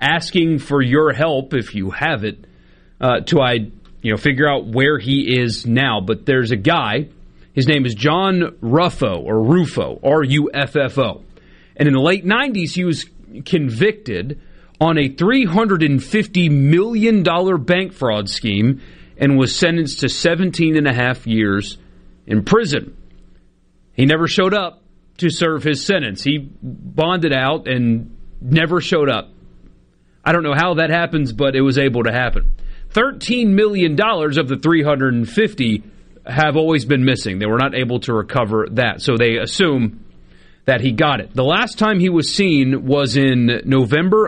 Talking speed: 170 wpm